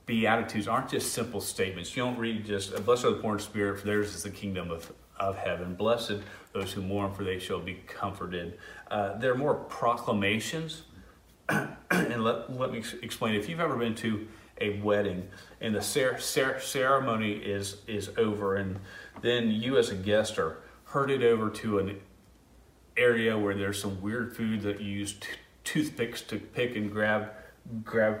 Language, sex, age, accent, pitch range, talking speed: English, male, 40-59, American, 100-110 Hz, 180 wpm